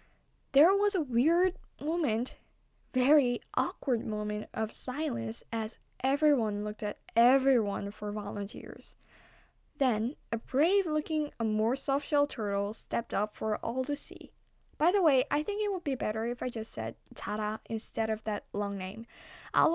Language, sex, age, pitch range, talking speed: English, female, 10-29, 210-270 Hz, 155 wpm